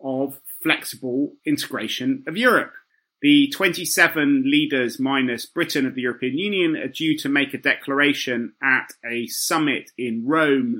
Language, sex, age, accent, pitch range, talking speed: English, male, 30-49, British, 130-170 Hz, 140 wpm